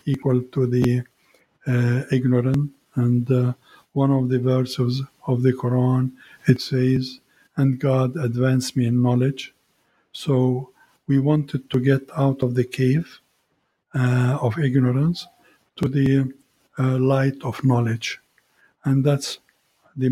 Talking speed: 130 wpm